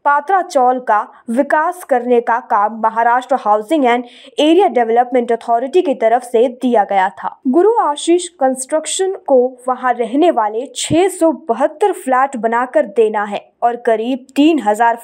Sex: female